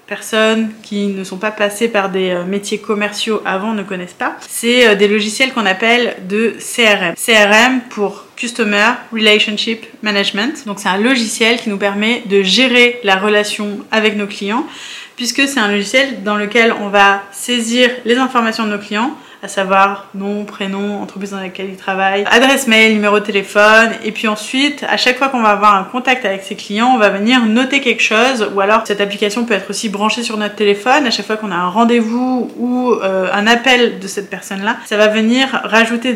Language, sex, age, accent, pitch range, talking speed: French, female, 20-39, French, 200-235 Hz, 195 wpm